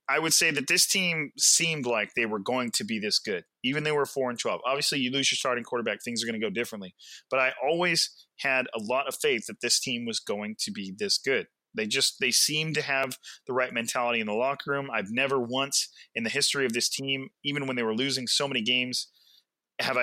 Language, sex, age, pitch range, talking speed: English, male, 30-49, 115-140 Hz, 245 wpm